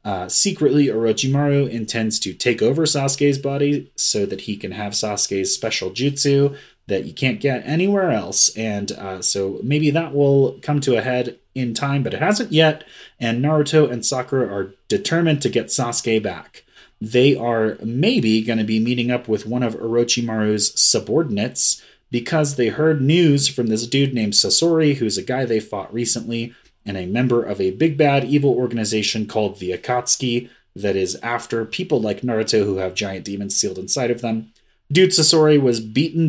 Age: 30-49